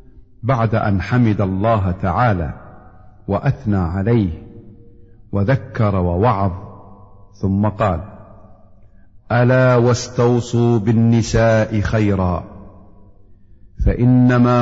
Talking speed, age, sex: 65 wpm, 50-69, male